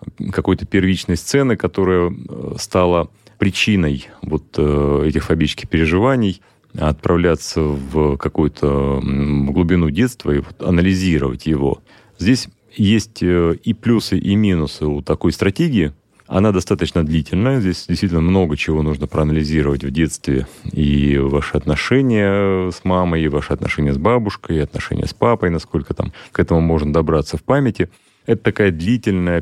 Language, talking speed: Russian, 130 wpm